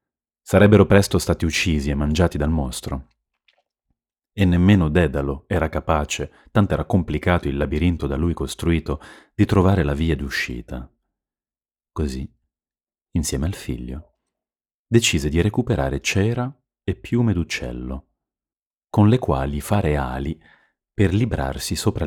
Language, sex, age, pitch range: Italian, male, 30-49, 75-95 Hz